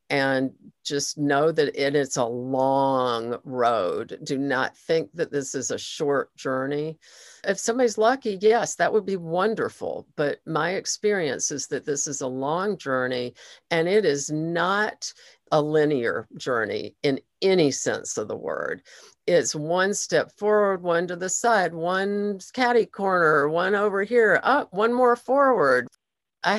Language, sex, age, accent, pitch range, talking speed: English, female, 50-69, American, 145-210 Hz, 150 wpm